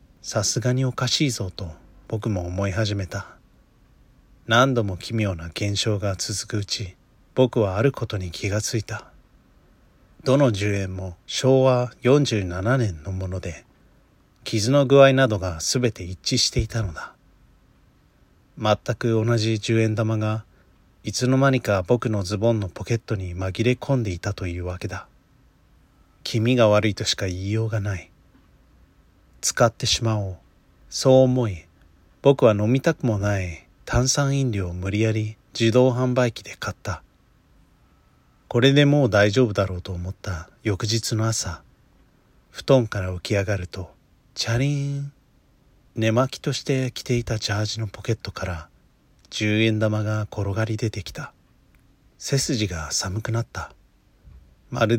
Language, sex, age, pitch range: Japanese, male, 40-59, 95-125 Hz